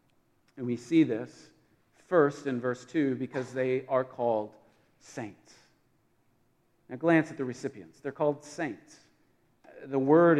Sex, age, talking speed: male, 40-59, 135 wpm